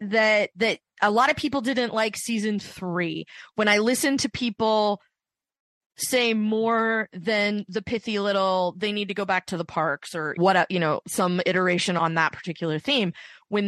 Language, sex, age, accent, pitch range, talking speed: English, female, 20-39, American, 190-235 Hz, 175 wpm